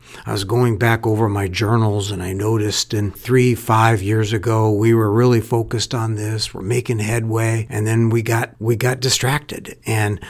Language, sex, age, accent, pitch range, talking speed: English, male, 60-79, American, 105-130 Hz, 185 wpm